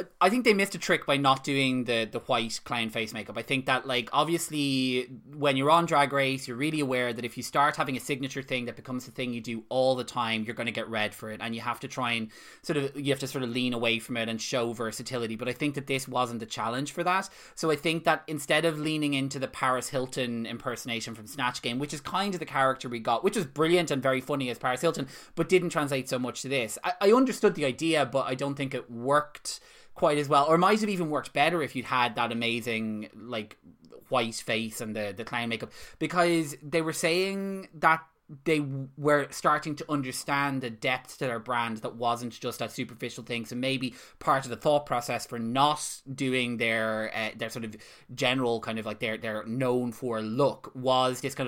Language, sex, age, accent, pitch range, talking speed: English, male, 20-39, Irish, 120-145 Hz, 235 wpm